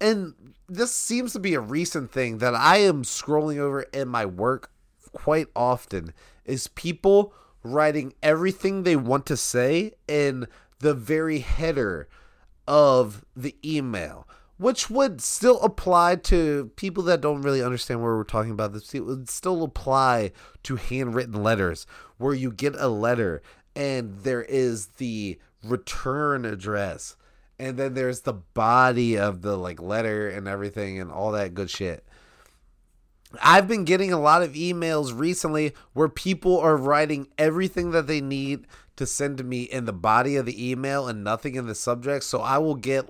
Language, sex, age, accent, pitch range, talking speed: English, male, 30-49, American, 120-160 Hz, 165 wpm